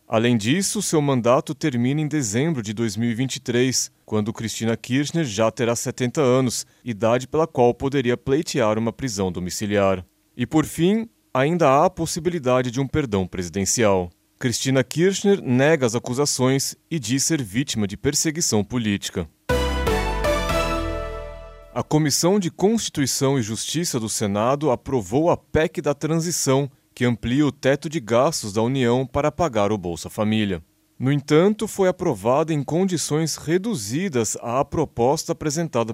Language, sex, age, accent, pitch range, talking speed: Portuguese, male, 30-49, Brazilian, 115-155 Hz, 140 wpm